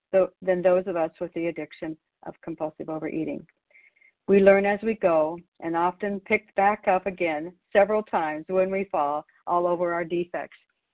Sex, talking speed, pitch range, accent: female, 165 wpm, 160-190 Hz, American